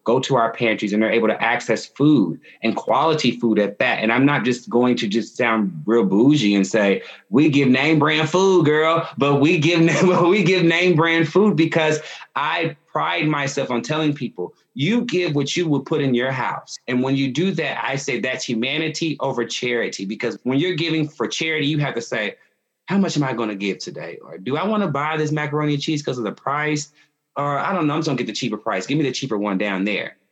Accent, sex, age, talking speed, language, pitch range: American, male, 30-49, 235 wpm, English, 115-150 Hz